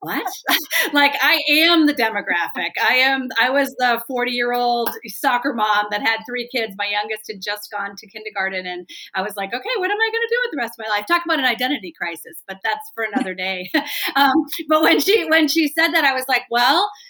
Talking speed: 225 wpm